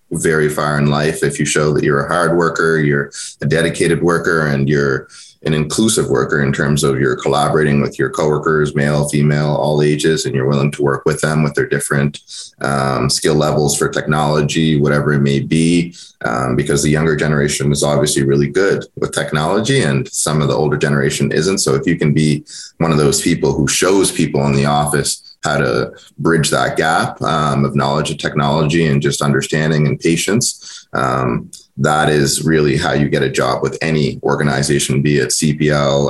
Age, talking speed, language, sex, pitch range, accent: 20-39, 190 wpm, English, male, 70-75 Hz, American